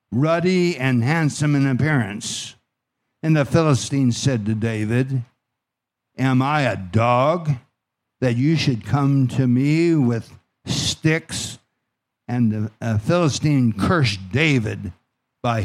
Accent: American